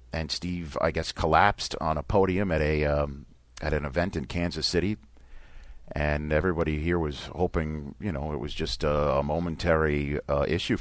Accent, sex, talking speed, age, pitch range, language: American, male, 170 wpm, 40-59, 65-85 Hz, English